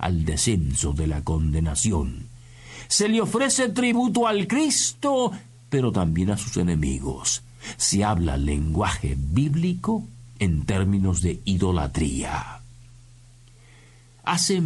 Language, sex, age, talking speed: Spanish, male, 50-69, 100 wpm